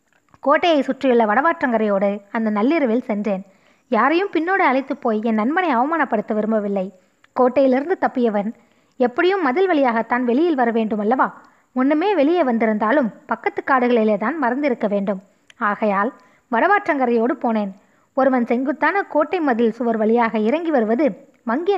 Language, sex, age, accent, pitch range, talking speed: Tamil, female, 20-39, native, 220-285 Hz, 115 wpm